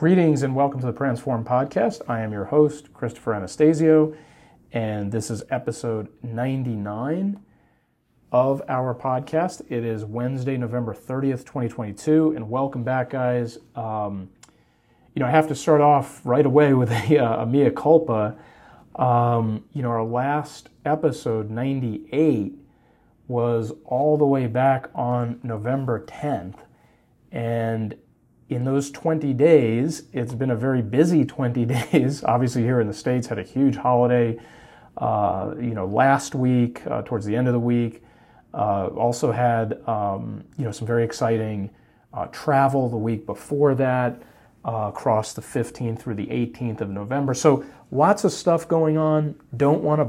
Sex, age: male, 40-59